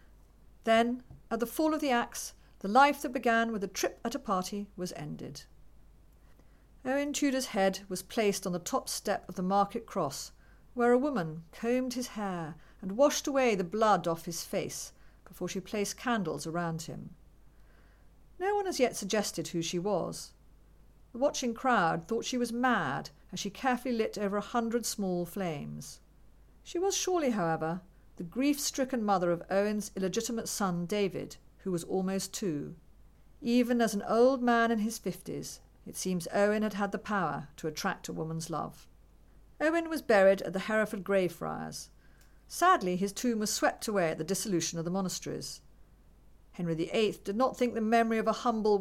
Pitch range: 185-240 Hz